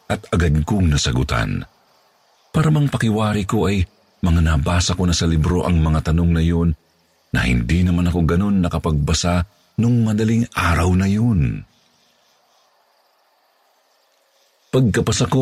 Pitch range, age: 70-90 Hz, 50-69